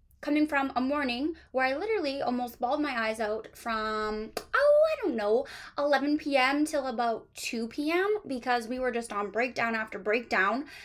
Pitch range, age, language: 225-290 Hz, 10-29, English